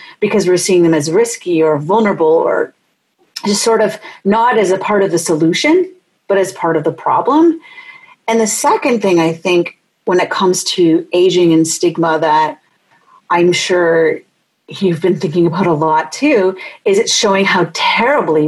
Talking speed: 170 wpm